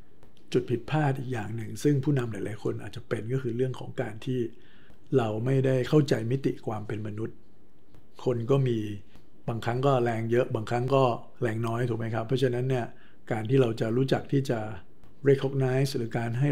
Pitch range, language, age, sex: 110-135 Hz, Thai, 60-79, male